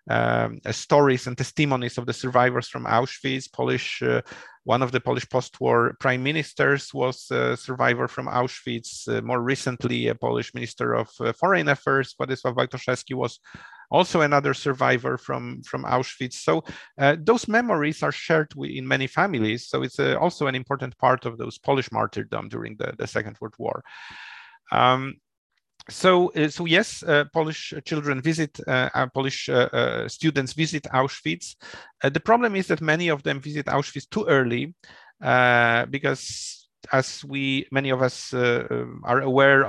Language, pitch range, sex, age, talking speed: English, 125-150 Hz, male, 40-59, 160 wpm